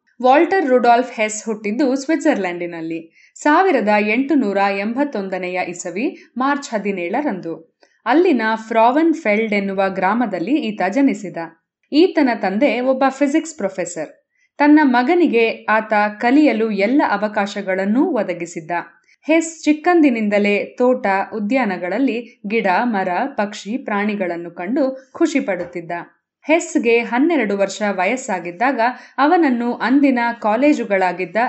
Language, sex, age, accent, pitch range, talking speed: Kannada, female, 20-39, native, 200-280 Hz, 90 wpm